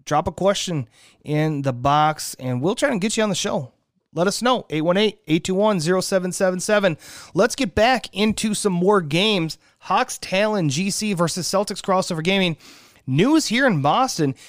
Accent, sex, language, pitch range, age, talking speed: American, male, English, 155-210 Hz, 30-49, 155 wpm